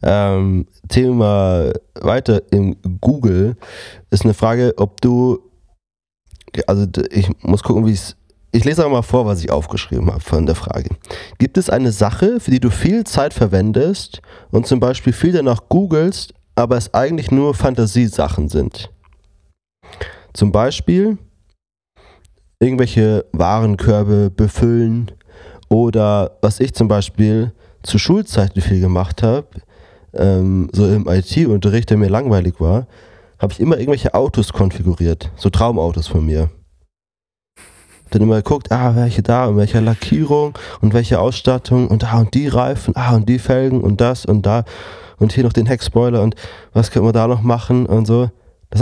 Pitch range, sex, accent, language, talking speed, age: 95-120 Hz, male, German, German, 150 wpm, 30-49